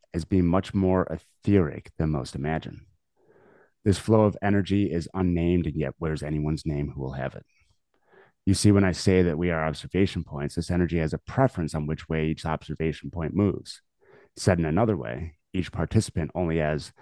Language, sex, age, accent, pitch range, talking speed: English, male, 30-49, American, 80-95 Hz, 185 wpm